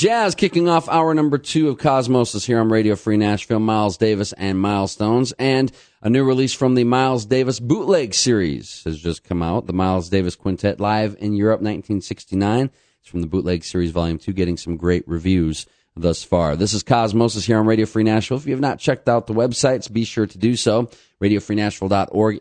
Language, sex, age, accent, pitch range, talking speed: English, male, 40-59, American, 90-120 Hz, 200 wpm